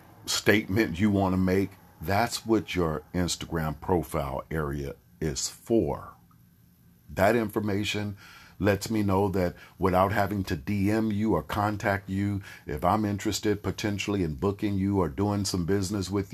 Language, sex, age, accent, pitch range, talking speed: English, male, 50-69, American, 85-105 Hz, 145 wpm